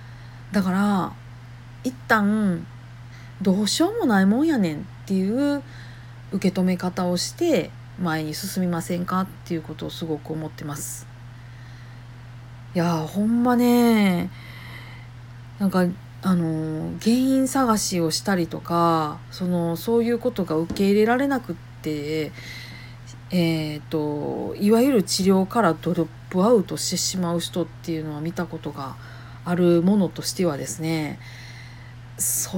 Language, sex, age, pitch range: Japanese, female, 40-59, 125-205 Hz